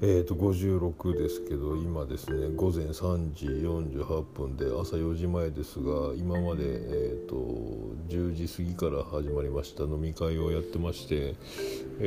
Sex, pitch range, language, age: male, 75-90 Hz, Japanese, 50-69